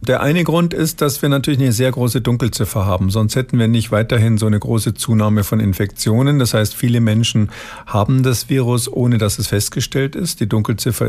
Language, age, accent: German, 50-69, German